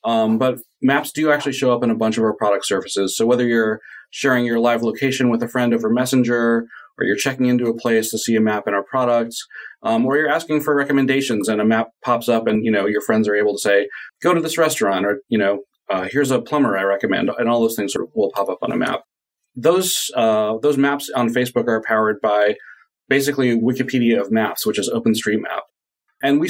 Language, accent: English, American